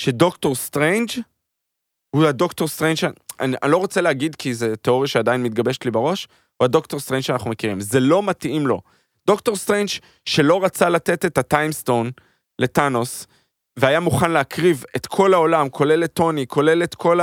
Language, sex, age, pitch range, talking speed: Hebrew, male, 20-39, 120-165 Hz, 160 wpm